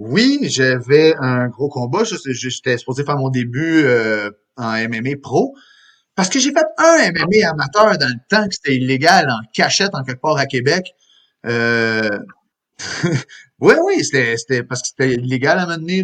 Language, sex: French, male